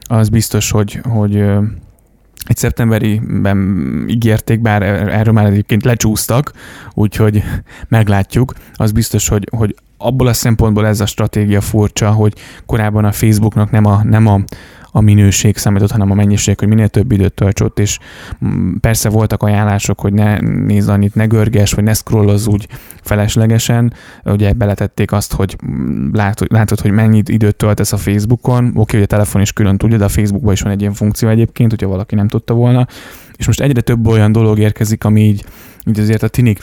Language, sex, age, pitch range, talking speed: Hungarian, male, 10-29, 100-115 Hz, 170 wpm